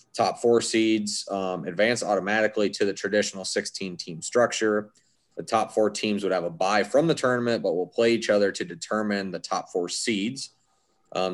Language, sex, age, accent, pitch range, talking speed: English, male, 20-39, American, 95-110 Hz, 180 wpm